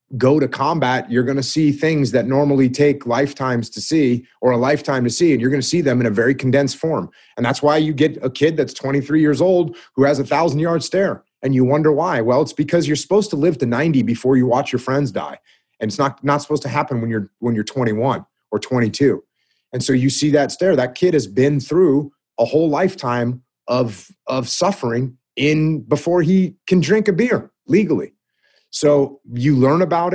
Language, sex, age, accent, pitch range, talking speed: English, male, 30-49, American, 125-155 Hz, 215 wpm